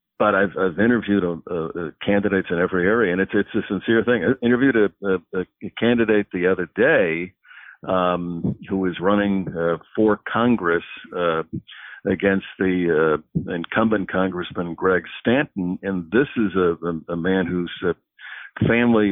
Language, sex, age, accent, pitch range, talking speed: English, male, 60-79, American, 90-105 Hz, 155 wpm